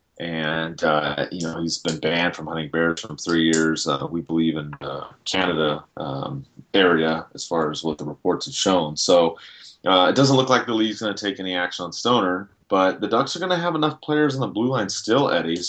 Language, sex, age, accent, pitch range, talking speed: English, male, 30-49, American, 85-105 Hz, 225 wpm